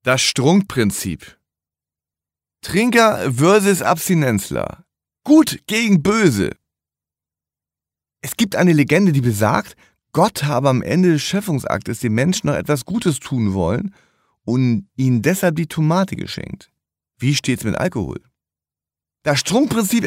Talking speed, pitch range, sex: 115 wpm, 130-195 Hz, male